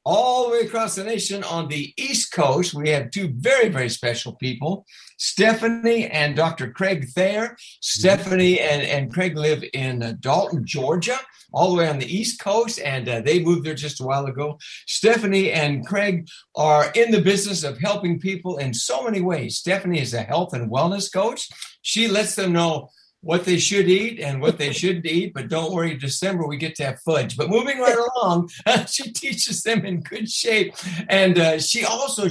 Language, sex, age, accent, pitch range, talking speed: English, male, 60-79, American, 145-195 Hz, 190 wpm